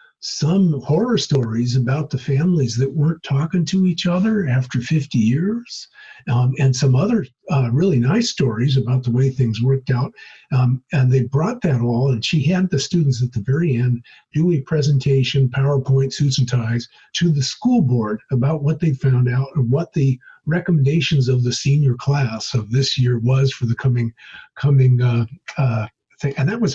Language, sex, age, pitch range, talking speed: English, male, 50-69, 125-155 Hz, 175 wpm